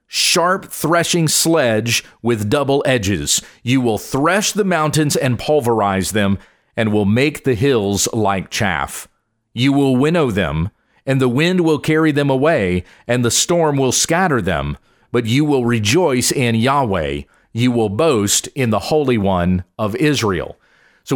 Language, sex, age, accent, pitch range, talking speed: English, male, 40-59, American, 115-150 Hz, 155 wpm